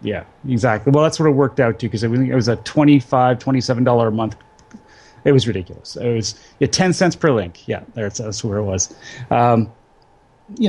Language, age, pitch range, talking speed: English, 30-49, 115-150 Hz, 200 wpm